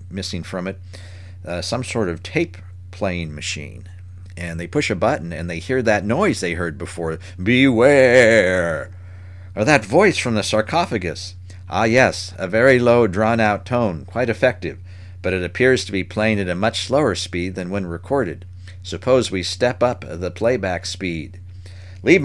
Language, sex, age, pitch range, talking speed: English, male, 50-69, 90-115 Hz, 155 wpm